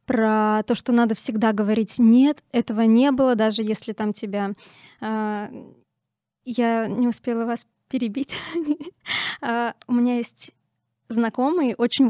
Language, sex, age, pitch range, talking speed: Russian, female, 20-39, 215-255 Hz, 120 wpm